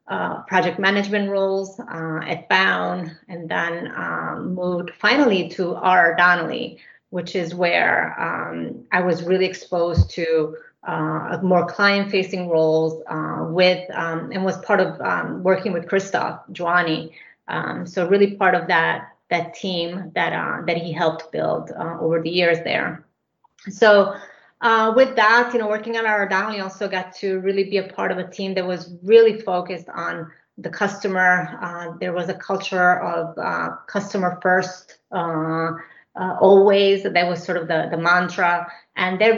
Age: 30-49